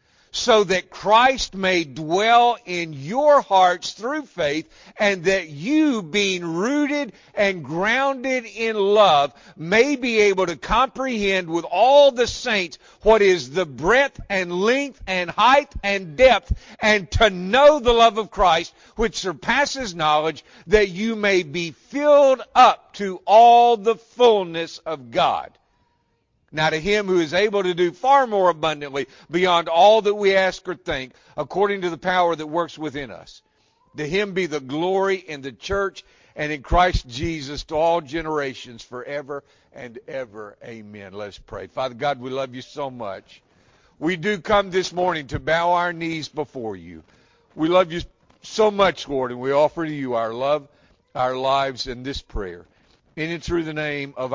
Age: 50-69